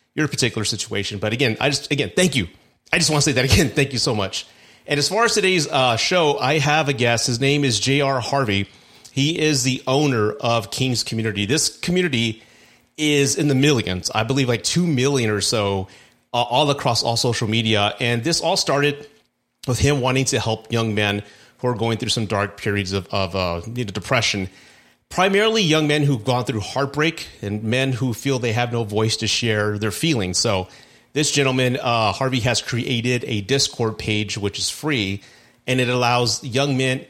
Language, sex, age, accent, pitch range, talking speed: English, male, 30-49, American, 110-140 Hz, 195 wpm